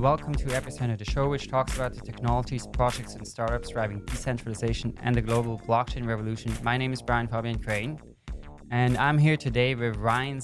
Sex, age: male, 20-39